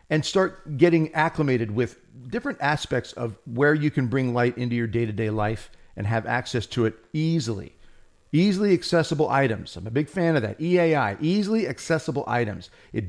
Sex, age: male, 50-69